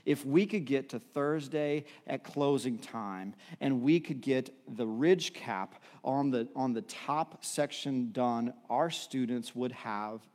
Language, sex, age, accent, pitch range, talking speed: English, male, 40-59, American, 120-160 Hz, 150 wpm